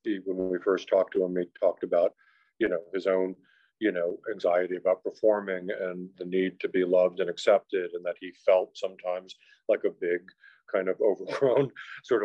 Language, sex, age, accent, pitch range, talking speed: English, male, 50-69, American, 90-130 Hz, 185 wpm